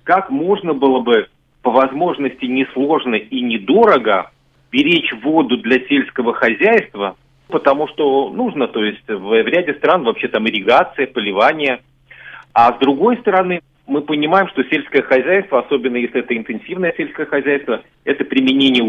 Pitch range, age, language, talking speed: 130-190 Hz, 40-59, Russian, 140 wpm